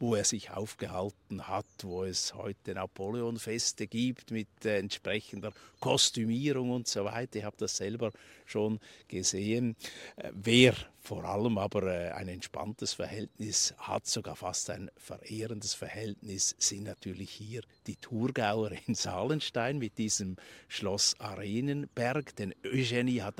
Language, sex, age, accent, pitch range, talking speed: German, male, 50-69, Austrian, 100-120 Hz, 135 wpm